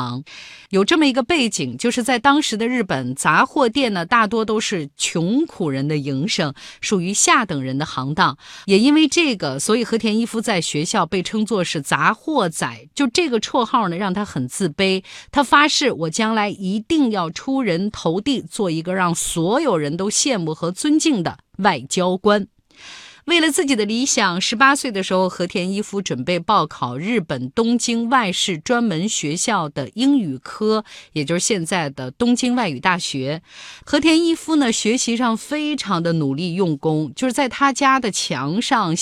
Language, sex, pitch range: Chinese, female, 160-250 Hz